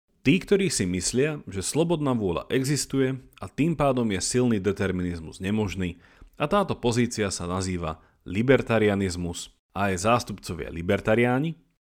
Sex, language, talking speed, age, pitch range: male, Slovak, 125 wpm, 40-59, 90-130 Hz